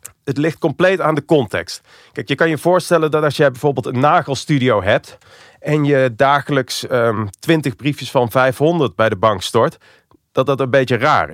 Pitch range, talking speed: 115-145 Hz, 185 wpm